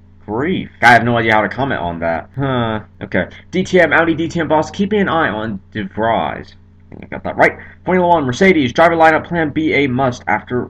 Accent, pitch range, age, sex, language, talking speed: American, 95-150 Hz, 30-49, male, English, 200 wpm